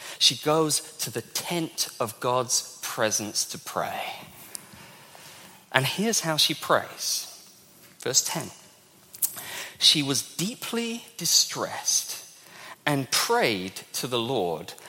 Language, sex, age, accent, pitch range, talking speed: English, male, 30-49, British, 130-215 Hz, 105 wpm